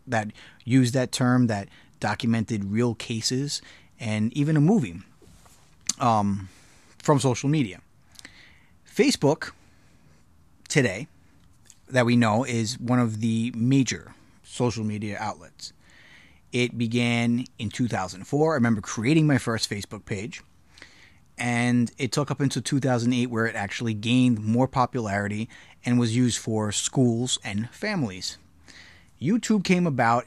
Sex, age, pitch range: male, 30-49, 110-130 Hz